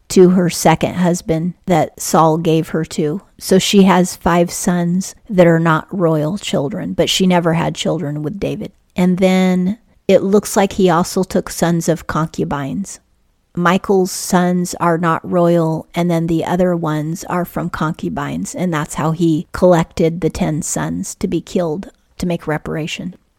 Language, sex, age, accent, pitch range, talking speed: English, female, 40-59, American, 165-185 Hz, 165 wpm